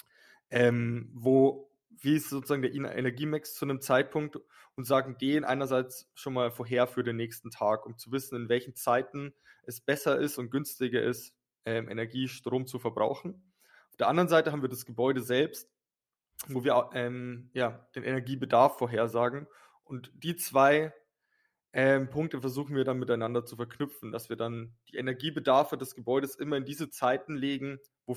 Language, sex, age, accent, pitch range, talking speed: German, male, 20-39, German, 120-140 Hz, 165 wpm